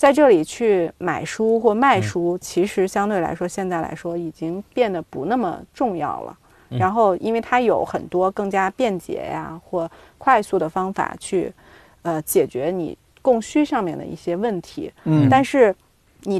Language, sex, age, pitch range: Chinese, female, 30-49, 175-225 Hz